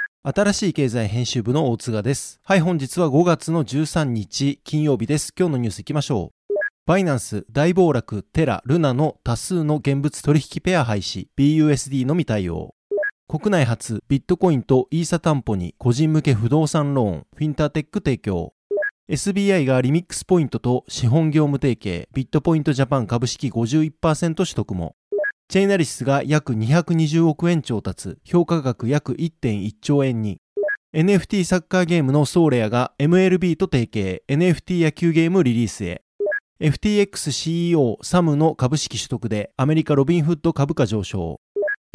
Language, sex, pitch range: Japanese, male, 130-170 Hz